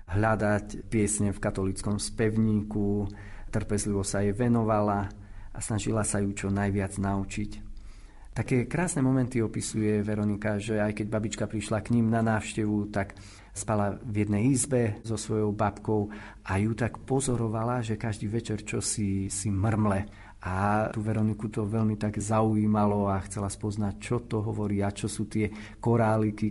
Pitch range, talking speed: 105-115 Hz, 150 wpm